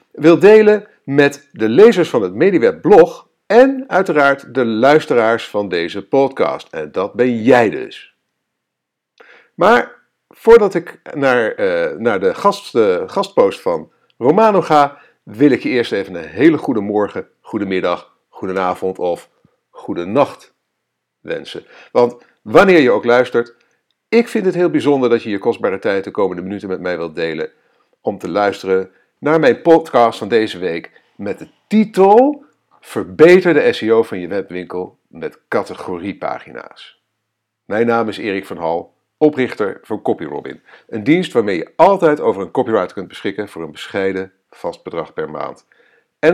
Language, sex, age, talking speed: Dutch, male, 50-69, 155 wpm